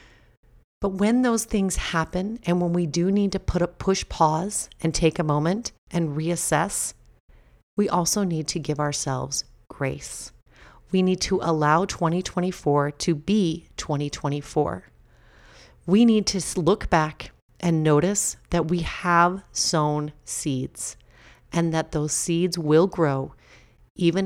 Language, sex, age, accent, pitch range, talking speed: English, female, 40-59, American, 150-190 Hz, 135 wpm